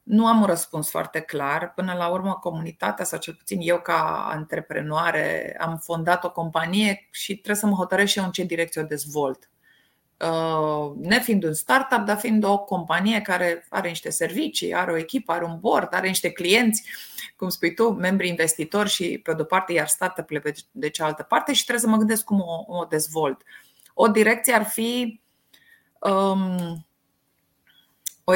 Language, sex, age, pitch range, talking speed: Romanian, female, 20-39, 170-215 Hz, 175 wpm